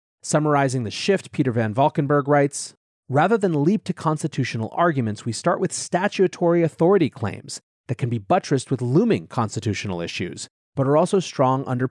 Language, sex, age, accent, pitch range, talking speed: English, male, 30-49, American, 115-150 Hz, 160 wpm